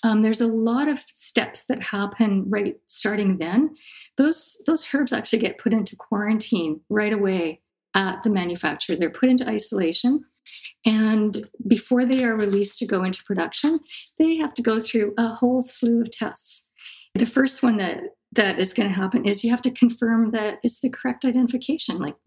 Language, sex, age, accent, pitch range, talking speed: English, female, 50-69, American, 195-245 Hz, 180 wpm